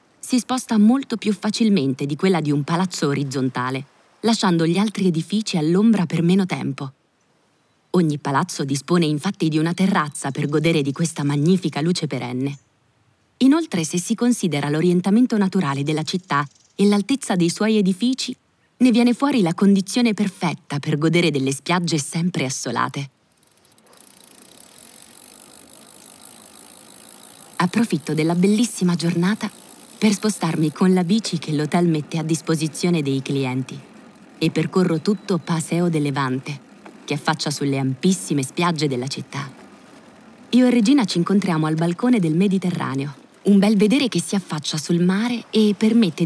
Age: 20-39